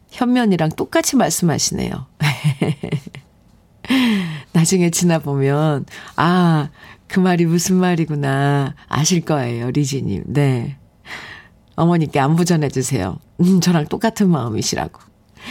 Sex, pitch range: female, 160-225 Hz